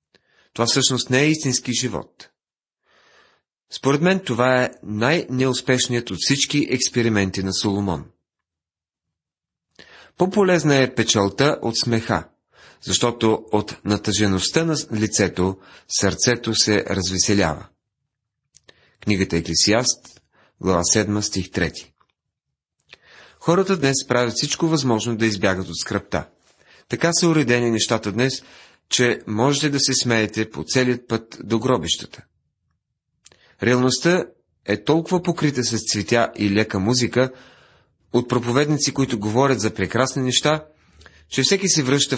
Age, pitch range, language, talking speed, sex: 40-59, 100-130 Hz, Bulgarian, 110 wpm, male